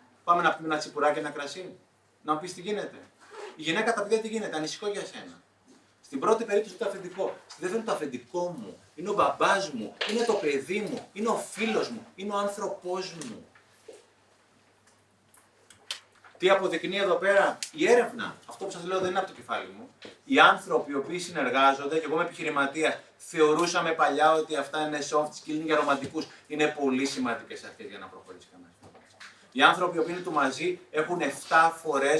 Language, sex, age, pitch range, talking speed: Greek, male, 30-49, 145-195 Hz, 185 wpm